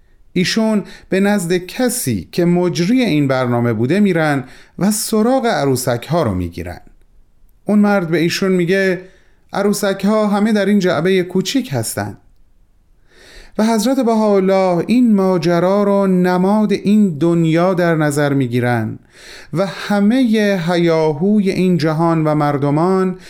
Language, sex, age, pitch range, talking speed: Persian, male, 30-49, 130-195 Hz, 125 wpm